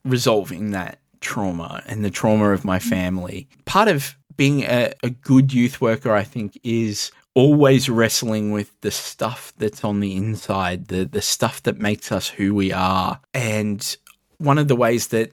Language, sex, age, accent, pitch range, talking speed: English, male, 20-39, Australian, 105-130 Hz, 170 wpm